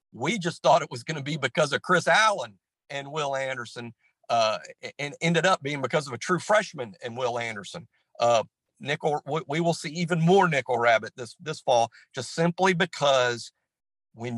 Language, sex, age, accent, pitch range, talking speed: English, male, 50-69, American, 120-165 Hz, 185 wpm